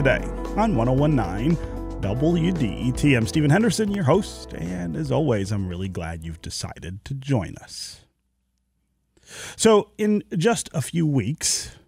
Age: 30-49